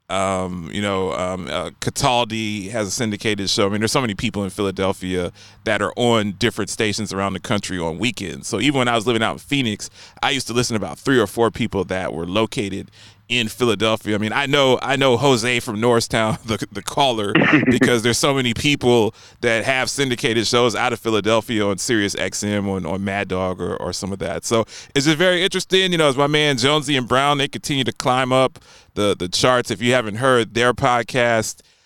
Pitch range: 105-125 Hz